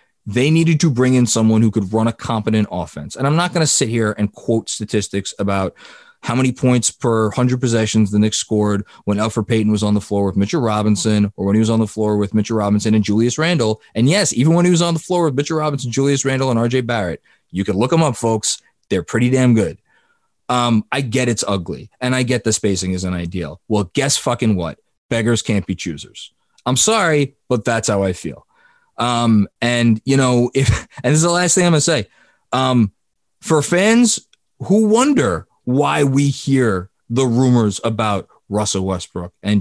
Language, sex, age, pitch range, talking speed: English, male, 20-39, 105-145 Hz, 210 wpm